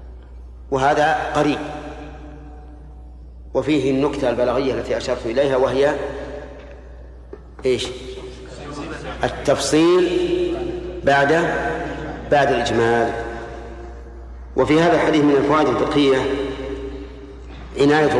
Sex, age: male, 50-69